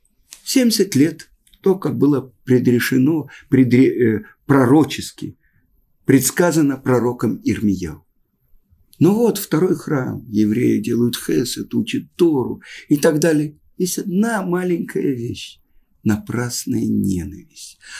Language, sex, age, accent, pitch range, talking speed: Russian, male, 50-69, native, 110-180 Hz, 105 wpm